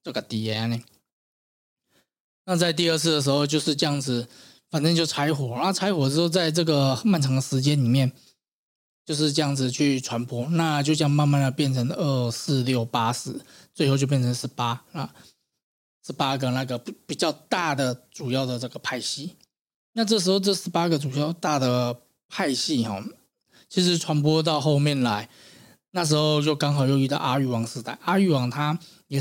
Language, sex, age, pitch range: Chinese, male, 20-39, 125-155 Hz